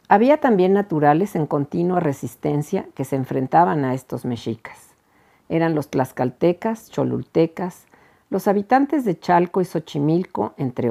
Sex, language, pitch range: female, Spanish, 140-185 Hz